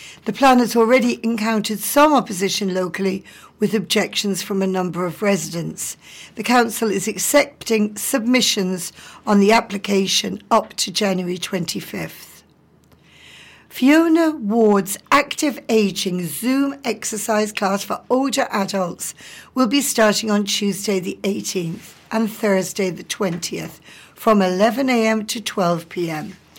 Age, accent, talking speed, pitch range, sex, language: 60-79, British, 115 wpm, 190-240 Hz, female, English